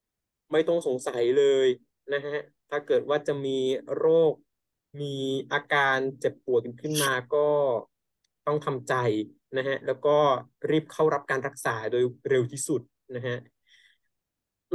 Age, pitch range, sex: 20-39, 135-180 Hz, male